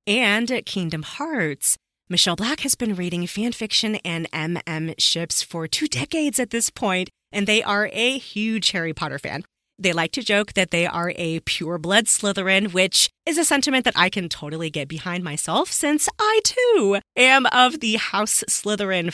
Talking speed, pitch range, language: 175 wpm, 170-225 Hz, English